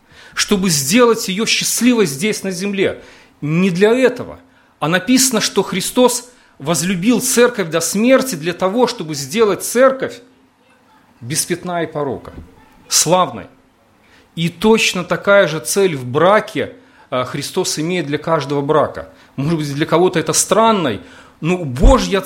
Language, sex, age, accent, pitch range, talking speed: Russian, male, 40-59, native, 155-220 Hz, 125 wpm